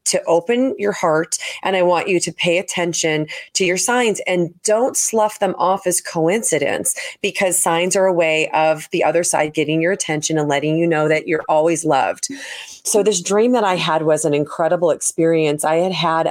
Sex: female